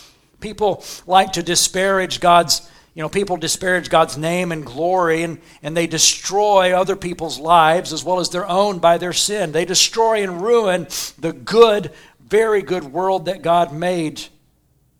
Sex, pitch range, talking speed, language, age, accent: male, 155-185 Hz, 160 wpm, English, 60-79, American